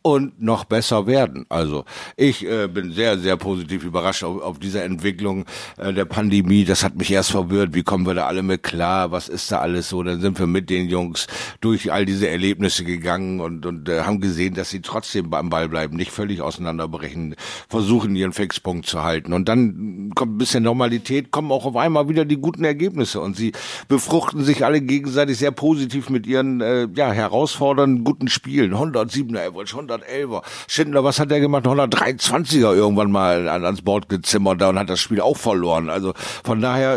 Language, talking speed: German, 195 wpm